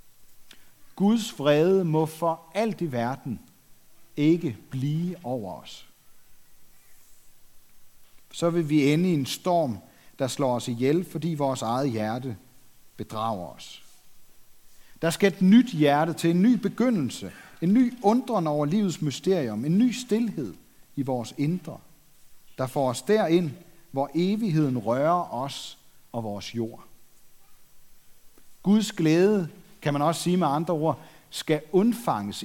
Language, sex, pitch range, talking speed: Danish, male, 130-180 Hz, 130 wpm